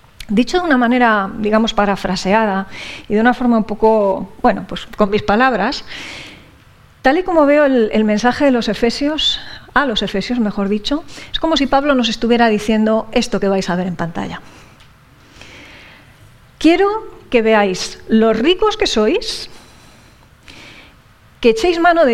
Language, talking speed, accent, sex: English, 155 wpm, Spanish, female